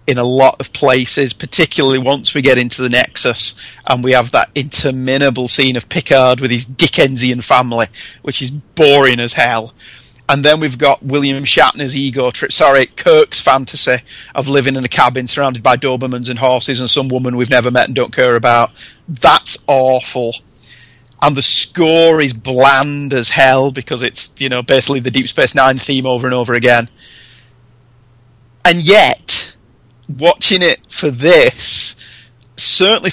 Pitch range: 125-145 Hz